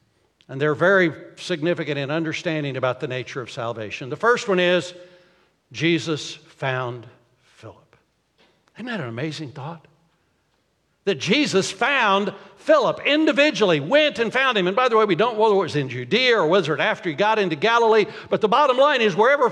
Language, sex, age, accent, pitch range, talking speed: English, male, 60-79, American, 160-235 Hz, 180 wpm